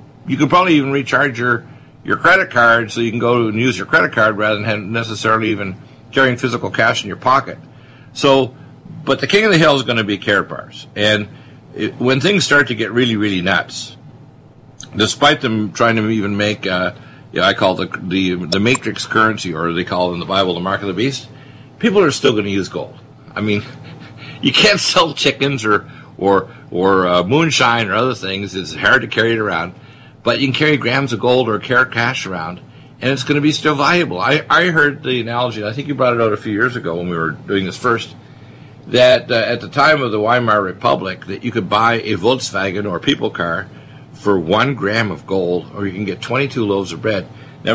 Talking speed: 225 wpm